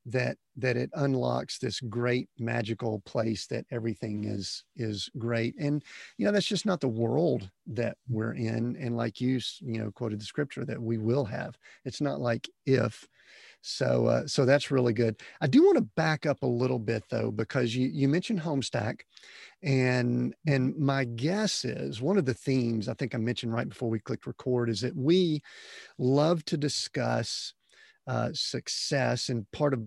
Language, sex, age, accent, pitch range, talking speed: English, male, 40-59, American, 115-140 Hz, 180 wpm